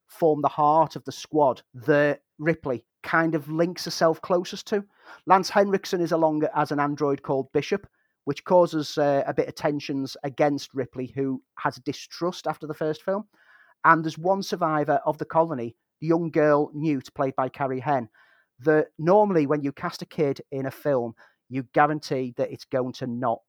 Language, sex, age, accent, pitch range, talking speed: English, male, 40-59, British, 135-165 Hz, 180 wpm